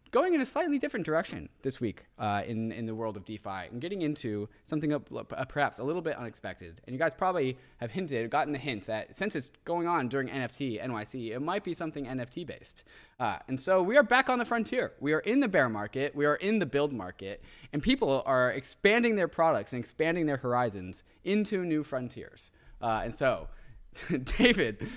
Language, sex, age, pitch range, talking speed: English, male, 20-39, 120-170 Hz, 210 wpm